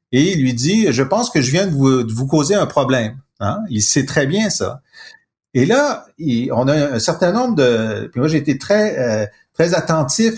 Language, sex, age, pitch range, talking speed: French, male, 50-69, 125-185 Hz, 225 wpm